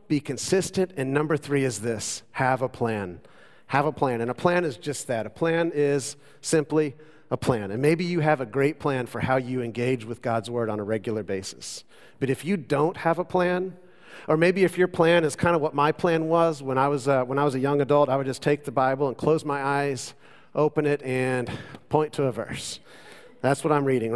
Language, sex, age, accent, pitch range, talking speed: English, male, 40-59, American, 125-155 Hz, 230 wpm